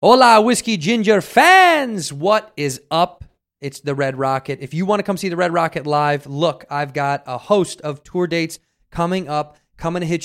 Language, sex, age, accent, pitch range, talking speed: English, male, 30-49, American, 140-170 Hz, 200 wpm